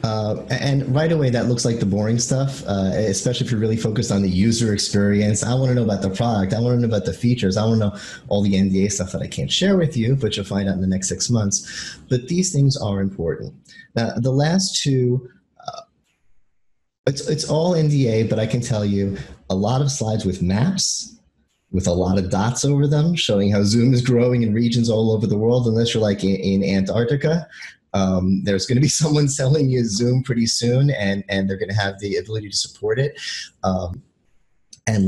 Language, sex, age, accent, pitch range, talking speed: English, male, 30-49, American, 100-125 Hz, 220 wpm